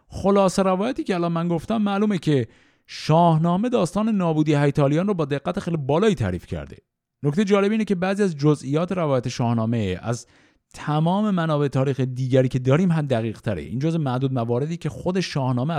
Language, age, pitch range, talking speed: Persian, 50-69, 120-170 Hz, 165 wpm